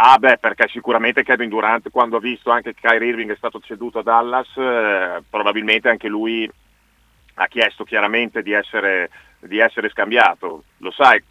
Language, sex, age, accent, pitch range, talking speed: Italian, male, 40-59, native, 115-135 Hz, 165 wpm